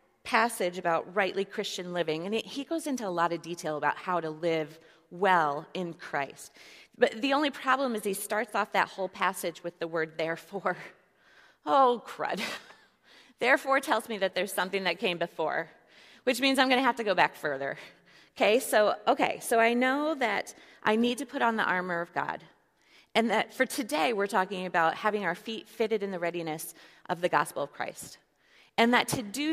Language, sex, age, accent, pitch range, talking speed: English, female, 30-49, American, 170-230 Hz, 190 wpm